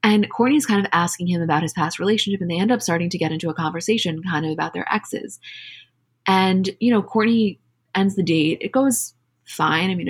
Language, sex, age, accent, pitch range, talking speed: English, female, 20-39, American, 160-195 Hz, 220 wpm